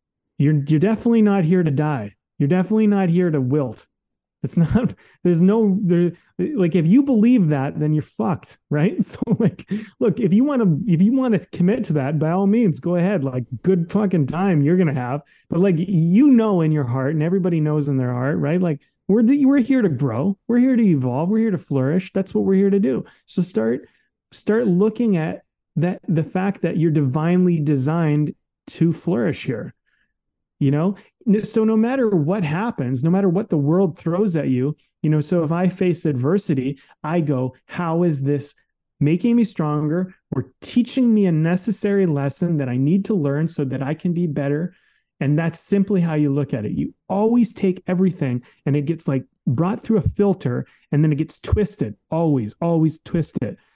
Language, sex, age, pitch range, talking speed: English, male, 30-49, 150-195 Hz, 200 wpm